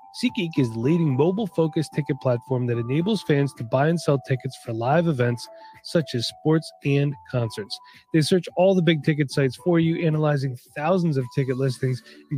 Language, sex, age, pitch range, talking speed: English, male, 30-49, 125-165 Hz, 185 wpm